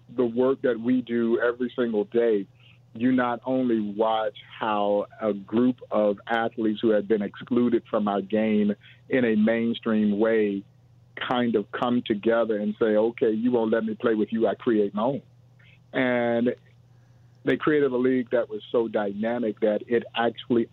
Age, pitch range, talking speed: 50-69, 110-125 Hz, 170 wpm